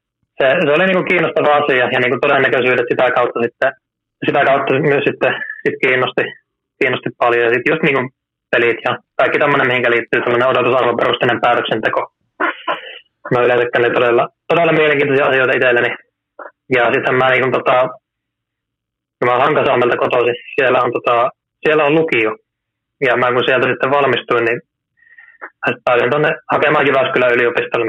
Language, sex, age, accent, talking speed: Finnish, male, 20-39, native, 140 wpm